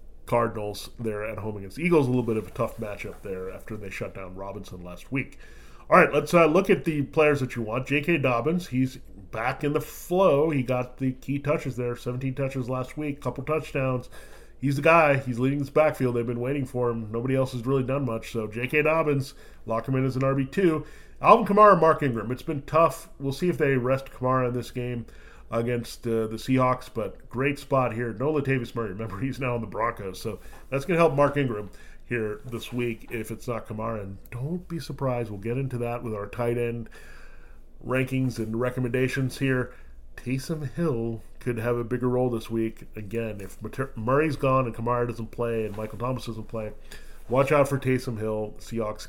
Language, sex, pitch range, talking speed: English, male, 115-135 Hz, 205 wpm